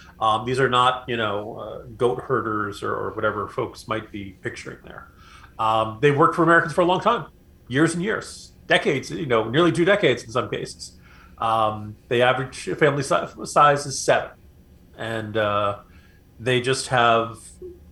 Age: 40-59